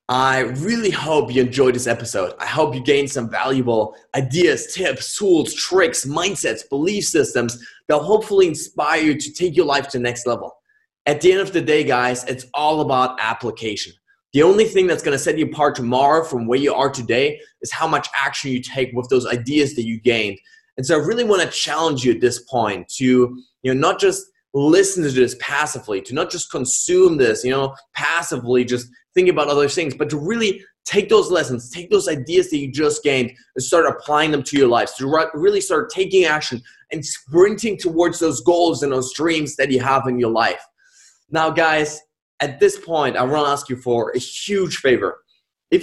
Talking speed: 205 wpm